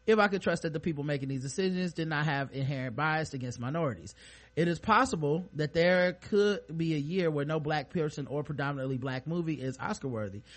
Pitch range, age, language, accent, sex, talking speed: 135-165 Hz, 30-49, English, American, male, 210 wpm